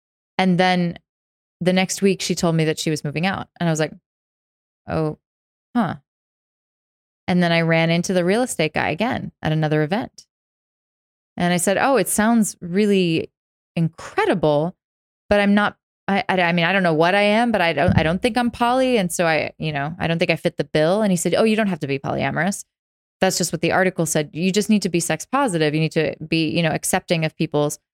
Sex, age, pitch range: female, 20-39, 160-200 Hz